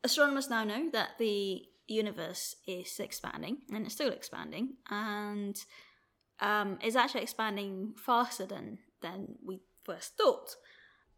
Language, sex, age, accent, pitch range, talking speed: English, female, 20-39, British, 195-250 Hz, 125 wpm